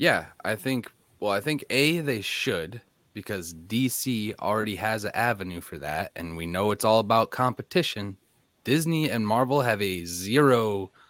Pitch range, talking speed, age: 90-125 Hz, 160 wpm, 20-39